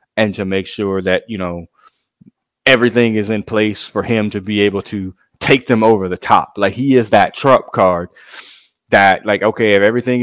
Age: 20-39